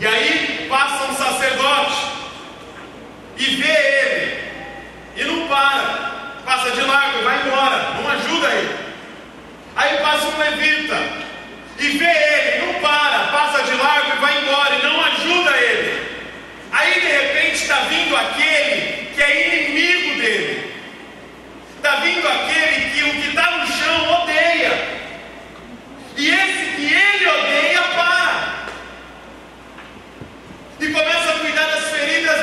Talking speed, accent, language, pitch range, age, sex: 130 wpm, Brazilian, Portuguese, 275-315 Hz, 40-59, male